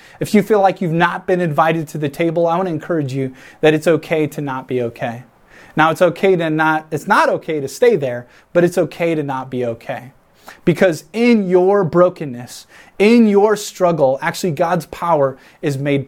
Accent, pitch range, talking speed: American, 155-205 Hz, 200 wpm